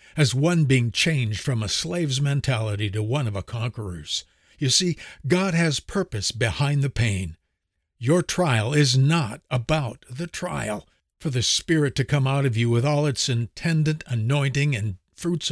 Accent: American